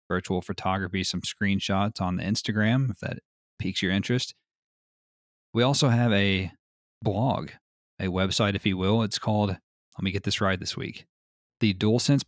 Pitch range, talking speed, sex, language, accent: 90-110 Hz, 160 wpm, male, English, American